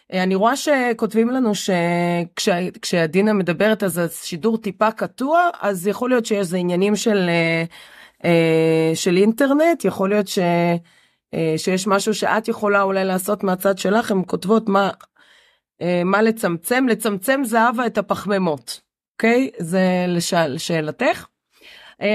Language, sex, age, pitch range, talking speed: Hebrew, female, 30-49, 190-255 Hz, 115 wpm